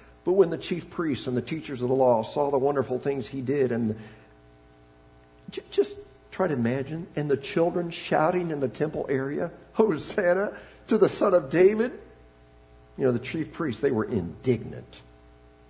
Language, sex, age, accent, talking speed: English, male, 50-69, American, 170 wpm